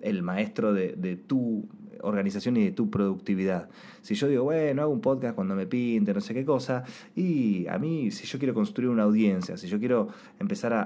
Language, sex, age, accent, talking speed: Spanish, male, 20-39, Argentinian, 210 wpm